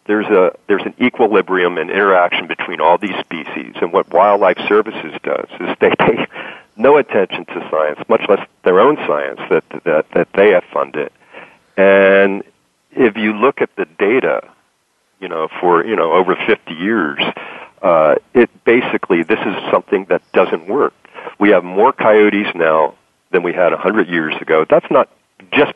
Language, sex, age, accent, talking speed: English, male, 50-69, American, 170 wpm